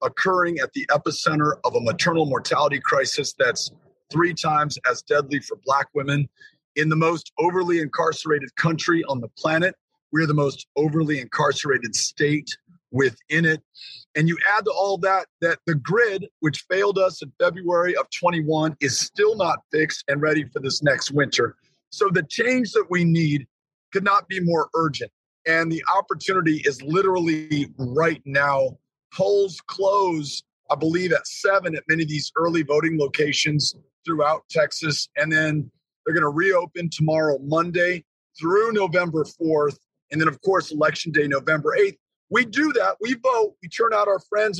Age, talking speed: 40-59, 165 wpm